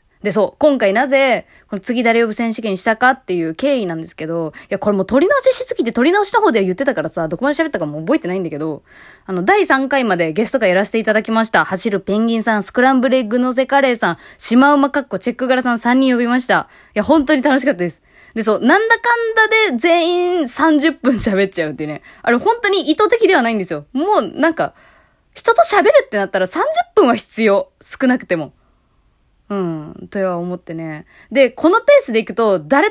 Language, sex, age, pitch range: Japanese, female, 20-39, 195-310 Hz